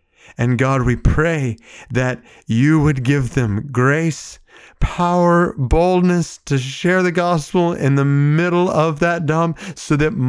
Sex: male